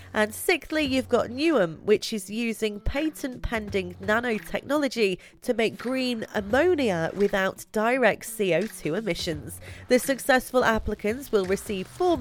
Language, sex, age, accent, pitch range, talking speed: English, female, 30-49, British, 190-250 Hz, 120 wpm